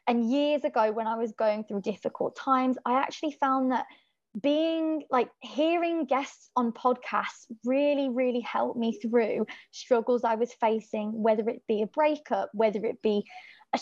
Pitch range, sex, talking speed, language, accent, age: 225-275 Hz, female, 165 wpm, English, British, 20-39